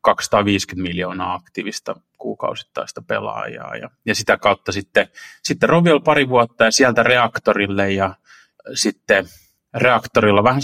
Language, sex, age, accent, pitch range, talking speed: Finnish, male, 30-49, native, 95-115 Hz, 115 wpm